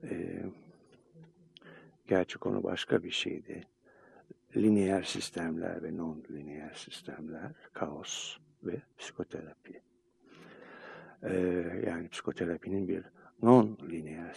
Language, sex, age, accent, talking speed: Turkish, male, 60-79, native, 90 wpm